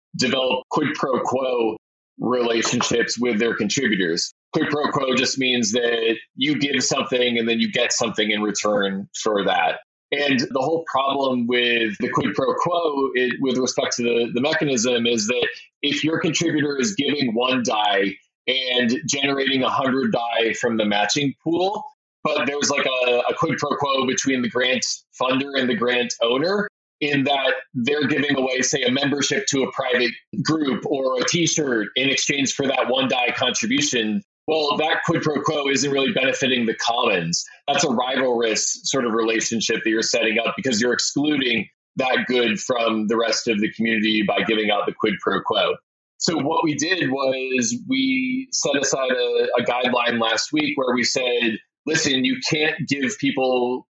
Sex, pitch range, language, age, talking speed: male, 115-145 Hz, English, 20-39, 170 wpm